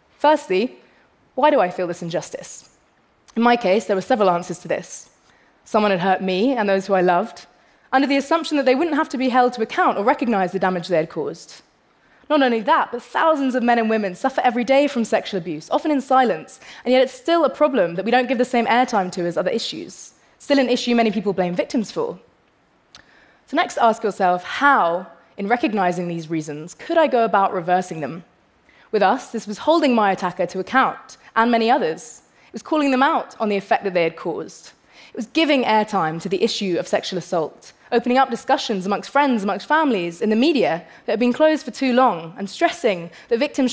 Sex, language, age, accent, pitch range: female, Korean, 20-39, British, 190-265 Hz